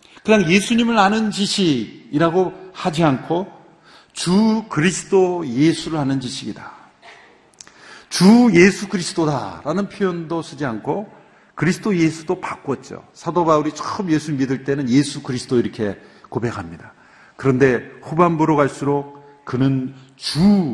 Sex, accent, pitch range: male, native, 150-195 Hz